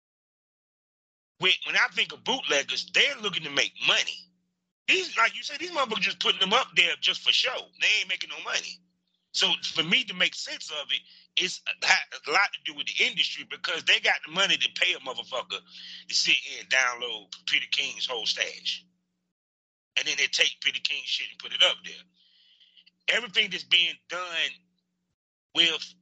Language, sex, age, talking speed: English, male, 30-49, 180 wpm